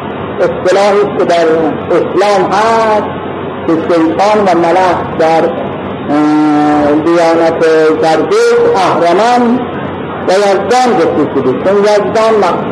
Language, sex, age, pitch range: Persian, male, 50-69, 170-230 Hz